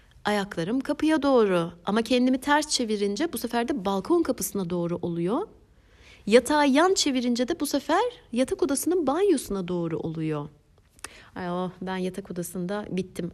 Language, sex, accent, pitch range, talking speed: Turkish, female, native, 180-255 Hz, 140 wpm